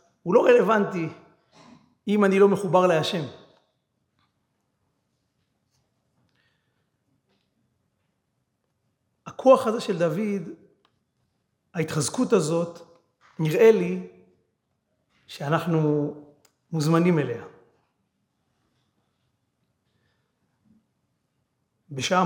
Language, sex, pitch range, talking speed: Hebrew, male, 145-215 Hz, 55 wpm